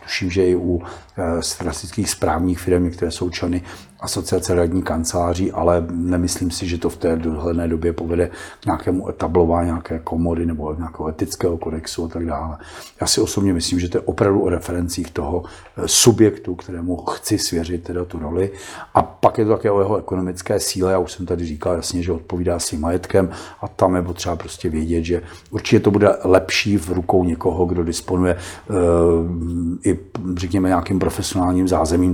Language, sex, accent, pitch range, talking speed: Czech, male, native, 85-95 Hz, 175 wpm